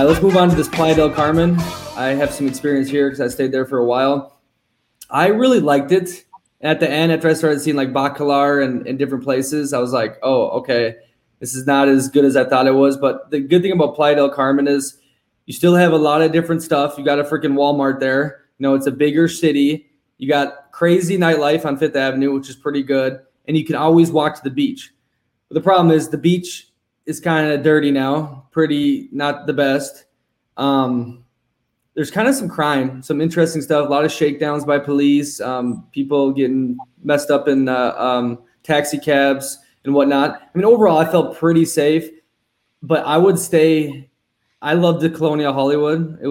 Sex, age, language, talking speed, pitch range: male, 20-39, English, 205 wpm, 135-155 Hz